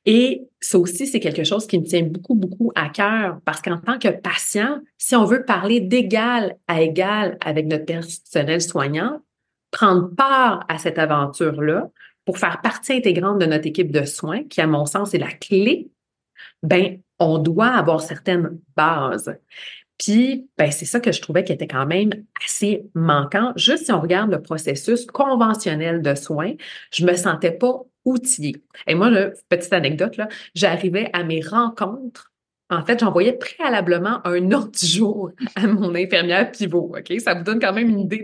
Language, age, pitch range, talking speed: French, 30-49, 170-225 Hz, 175 wpm